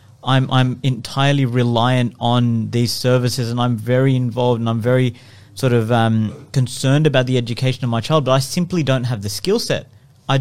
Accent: Australian